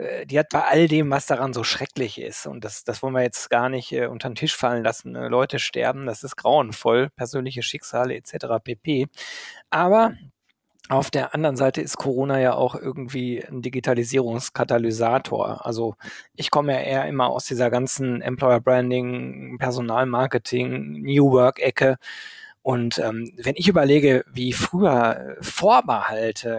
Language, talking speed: German, 150 wpm